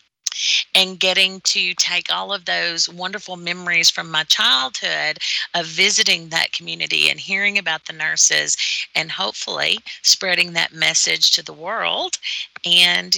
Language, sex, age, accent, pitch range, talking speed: English, female, 40-59, American, 170-210 Hz, 135 wpm